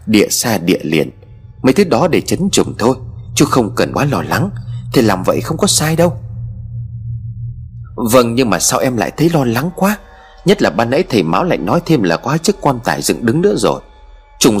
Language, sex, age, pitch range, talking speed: Vietnamese, male, 30-49, 110-145 Hz, 220 wpm